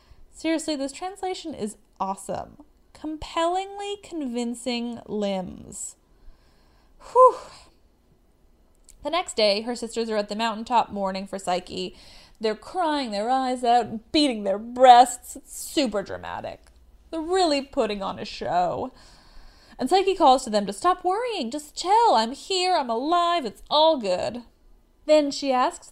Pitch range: 215-320 Hz